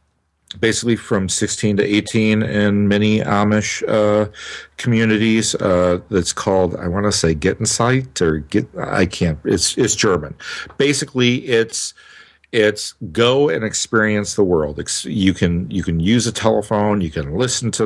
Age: 50-69